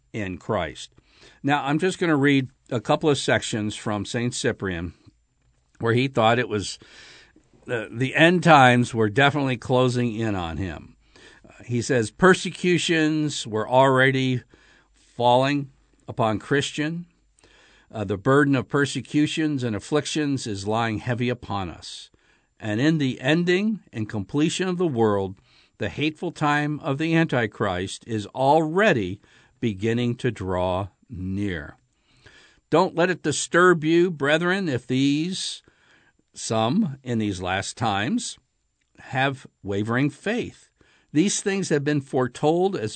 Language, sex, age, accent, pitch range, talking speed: English, male, 60-79, American, 110-150 Hz, 130 wpm